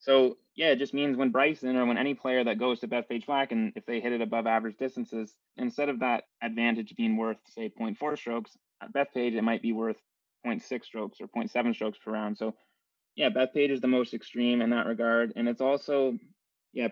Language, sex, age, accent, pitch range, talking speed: English, male, 20-39, American, 115-140 Hz, 215 wpm